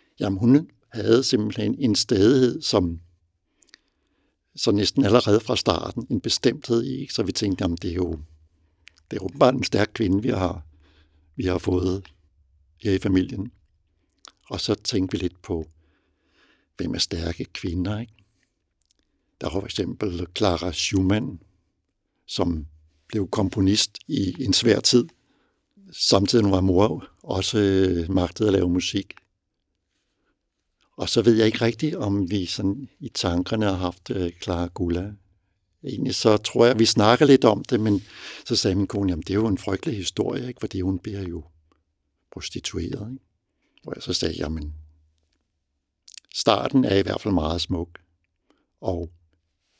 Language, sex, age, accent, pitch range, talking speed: Danish, male, 60-79, native, 85-105 Hz, 145 wpm